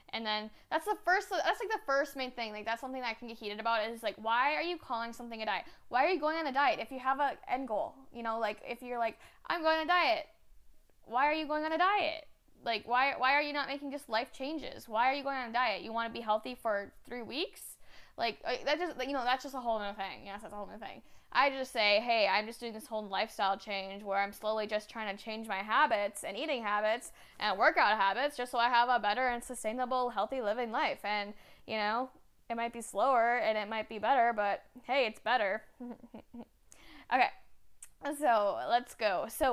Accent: American